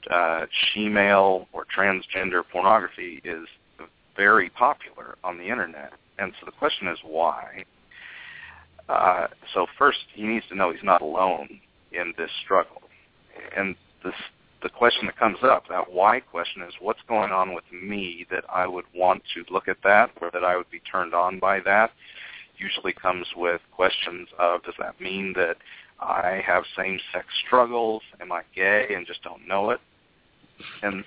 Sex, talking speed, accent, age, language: male, 165 wpm, American, 50-69, English